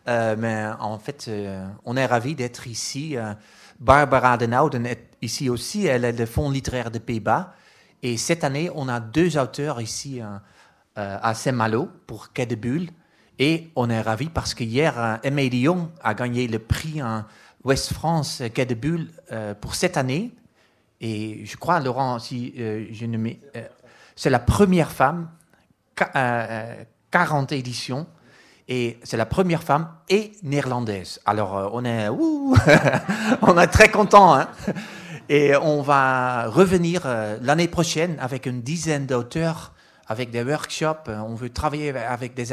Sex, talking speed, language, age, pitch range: male, 165 wpm, French, 30-49, 115-150 Hz